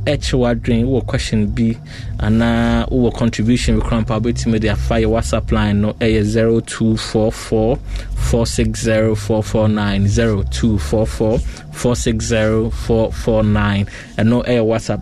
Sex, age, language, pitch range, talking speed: male, 20-39, English, 100-115 Hz, 100 wpm